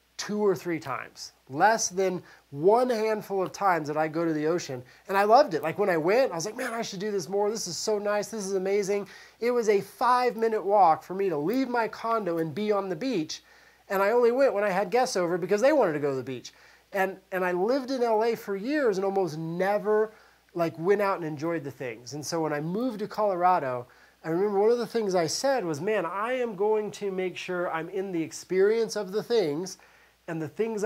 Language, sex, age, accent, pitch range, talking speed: English, male, 30-49, American, 155-210 Hz, 245 wpm